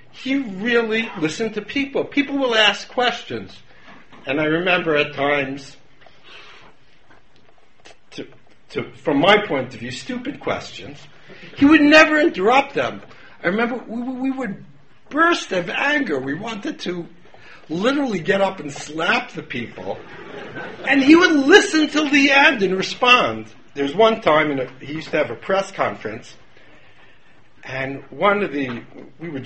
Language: English